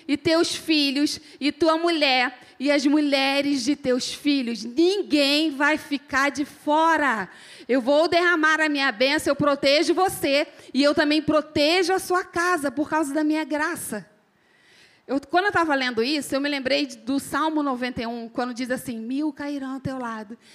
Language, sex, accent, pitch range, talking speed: Portuguese, female, Brazilian, 265-315 Hz, 165 wpm